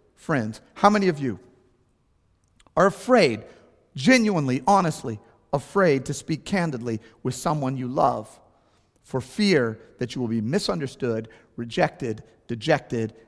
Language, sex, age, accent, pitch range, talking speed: English, male, 40-59, American, 125-180 Hz, 115 wpm